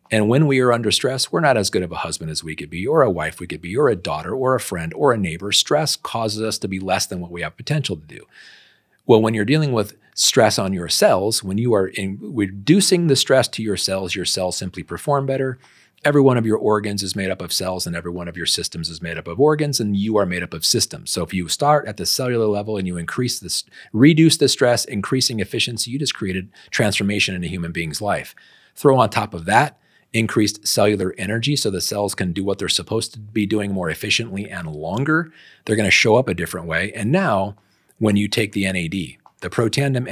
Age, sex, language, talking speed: 40-59, male, English, 245 wpm